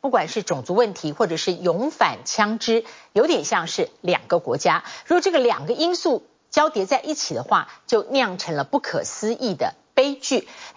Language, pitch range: Chinese, 210-320 Hz